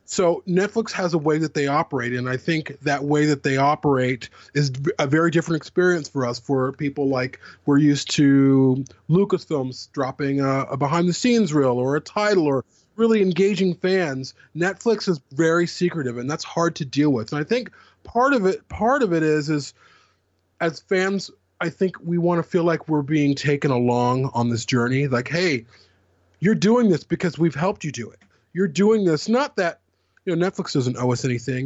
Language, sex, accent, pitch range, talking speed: English, male, American, 125-170 Hz, 195 wpm